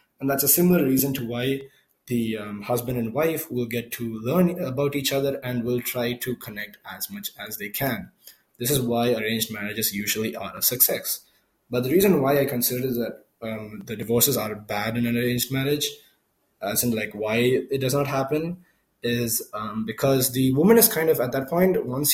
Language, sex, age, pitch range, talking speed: English, male, 20-39, 115-145 Hz, 205 wpm